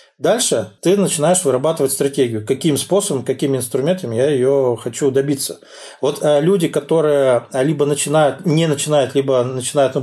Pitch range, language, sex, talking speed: 130-160 Hz, Russian, male, 140 wpm